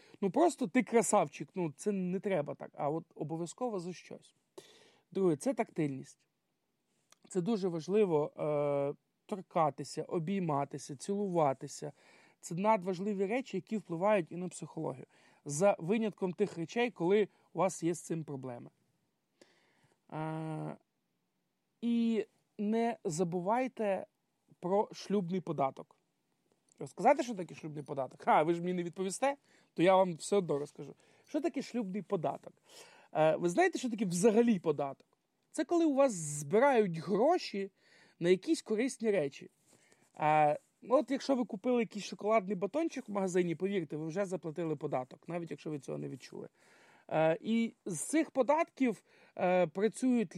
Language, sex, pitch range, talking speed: Ukrainian, male, 165-225 Hz, 135 wpm